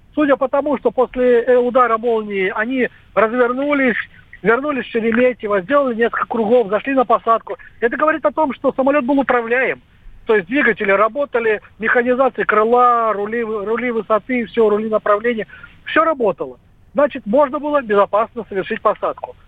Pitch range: 195-250 Hz